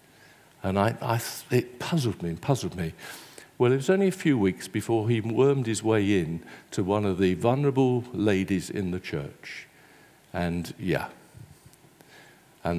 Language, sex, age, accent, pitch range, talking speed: English, male, 50-69, British, 100-150 Hz, 155 wpm